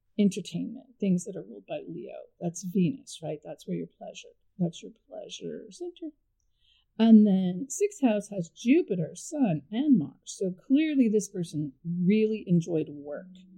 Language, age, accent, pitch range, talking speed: English, 50-69, American, 175-230 Hz, 150 wpm